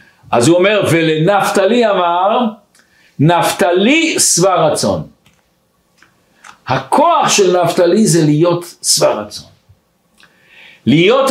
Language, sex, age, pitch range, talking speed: Hebrew, male, 60-79, 165-200 Hz, 85 wpm